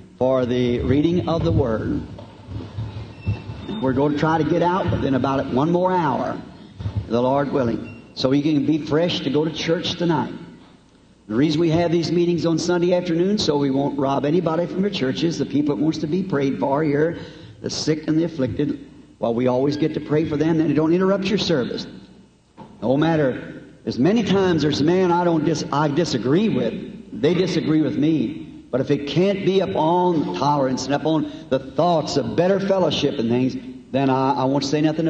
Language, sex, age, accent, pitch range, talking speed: English, male, 60-79, American, 130-170 Hz, 200 wpm